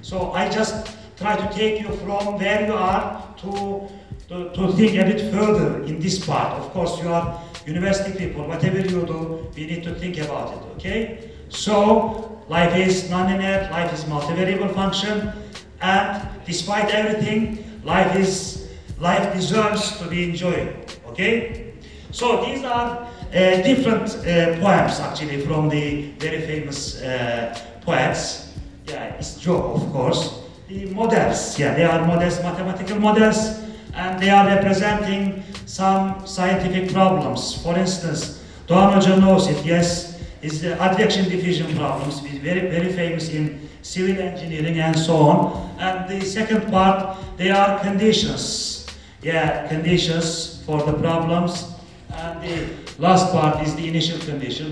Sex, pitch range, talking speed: male, 160-195 Hz, 145 wpm